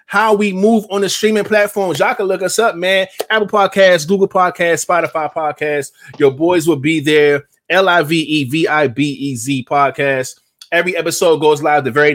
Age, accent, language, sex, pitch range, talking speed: 20-39, American, English, male, 140-185 Hz, 160 wpm